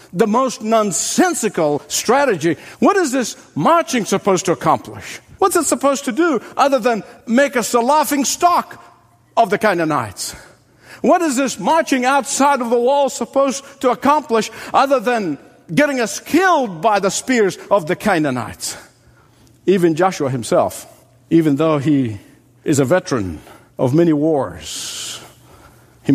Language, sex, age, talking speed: English, male, 60-79, 140 wpm